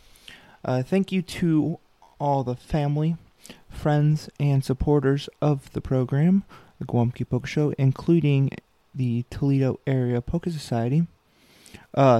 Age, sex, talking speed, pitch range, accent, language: 30-49, male, 120 wpm, 115-140 Hz, American, English